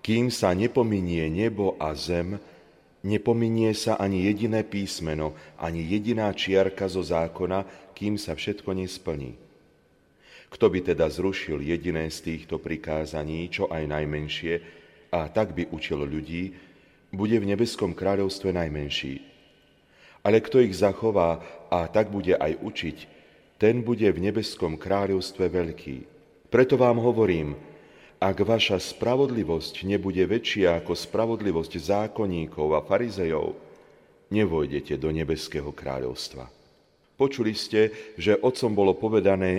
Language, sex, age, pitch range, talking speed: Slovak, male, 40-59, 85-105 Hz, 120 wpm